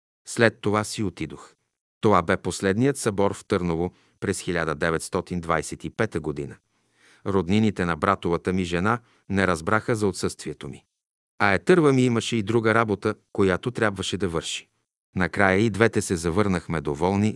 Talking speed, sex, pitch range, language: 140 wpm, male, 90-120 Hz, Bulgarian